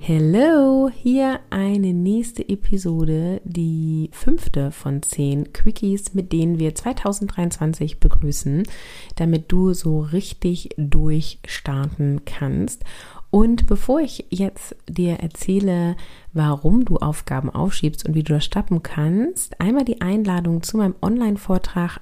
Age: 30-49